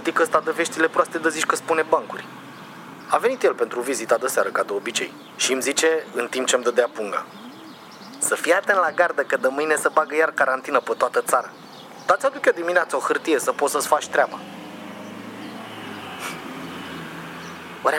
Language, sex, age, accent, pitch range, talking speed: Romanian, male, 30-49, native, 155-195 Hz, 185 wpm